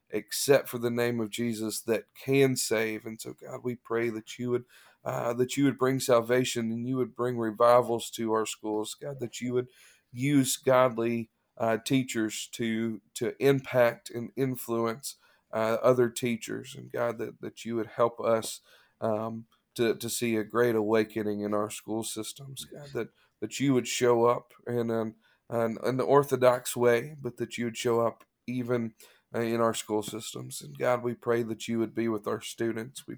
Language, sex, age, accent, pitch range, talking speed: English, male, 40-59, American, 110-125 Hz, 185 wpm